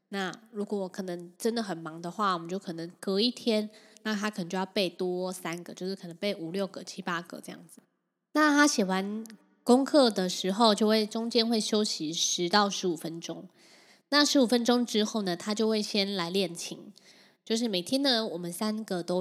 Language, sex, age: Chinese, female, 20-39